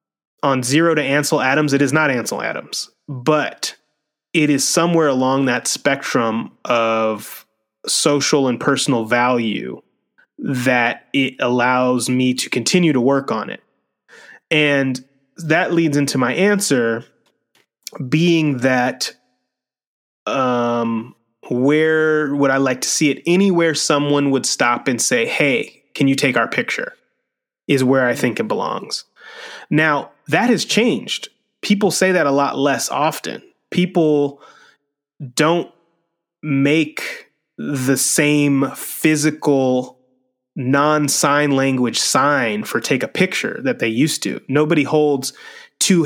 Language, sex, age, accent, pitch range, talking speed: English, male, 20-39, American, 130-155 Hz, 125 wpm